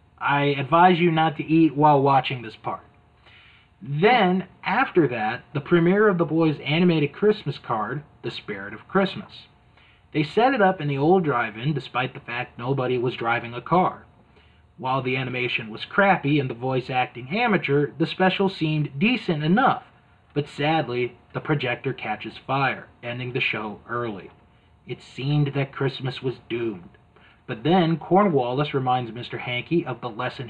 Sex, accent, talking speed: male, American, 160 wpm